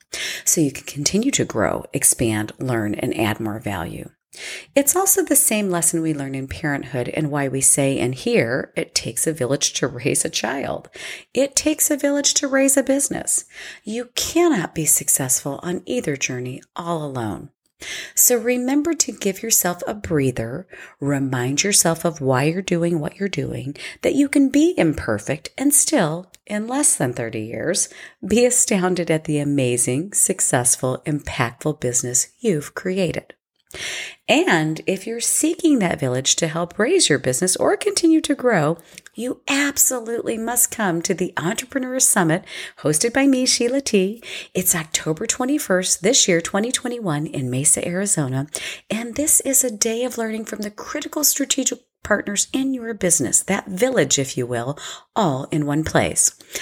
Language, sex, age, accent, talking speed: English, female, 40-59, American, 160 wpm